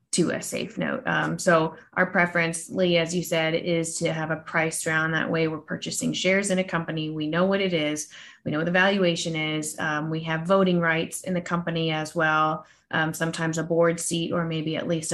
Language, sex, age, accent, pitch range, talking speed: English, female, 20-39, American, 160-175 Hz, 220 wpm